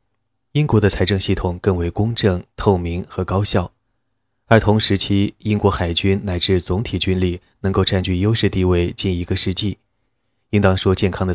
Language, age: Chinese, 20-39